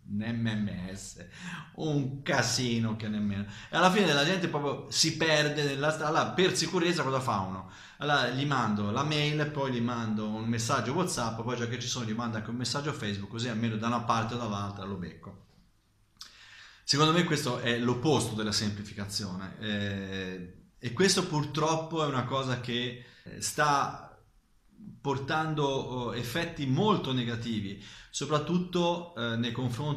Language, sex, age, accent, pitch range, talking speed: Italian, male, 30-49, native, 105-135 Hz, 150 wpm